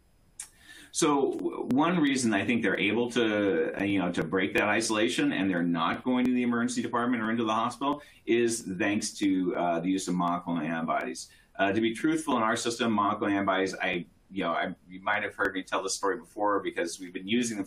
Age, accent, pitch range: 30-49, American, 90-125 Hz